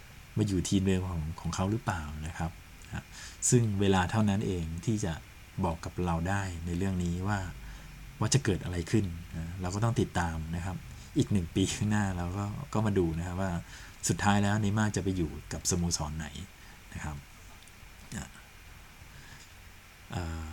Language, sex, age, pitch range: Thai, male, 20-39, 85-105 Hz